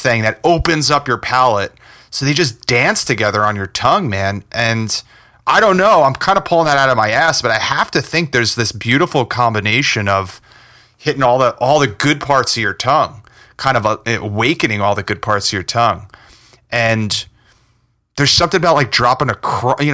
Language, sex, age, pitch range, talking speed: English, male, 30-49, 110-135 Hz, 200 wpm